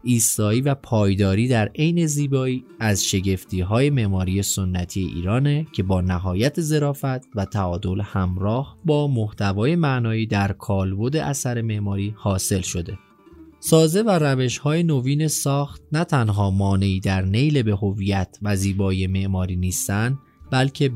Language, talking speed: Persian, 130 wpm